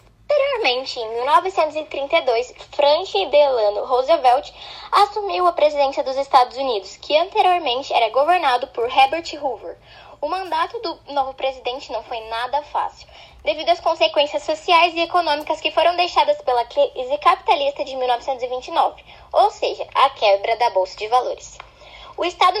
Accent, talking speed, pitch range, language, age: Brazilian, 140 wpm, 250-335 Hz, Portuguese, 10-29